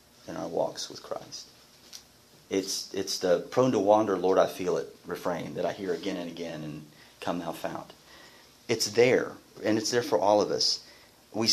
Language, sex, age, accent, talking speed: English, male, 40-59, American, 185 wpm